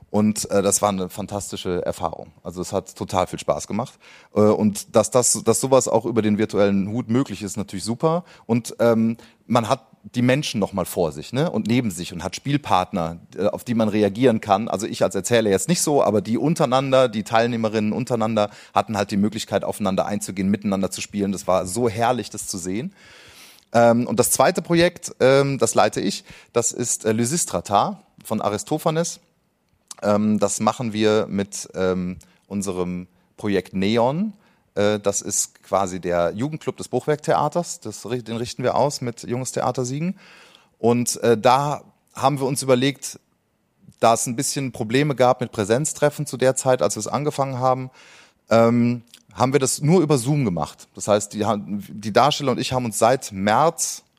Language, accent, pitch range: German, German, 105-130 Hz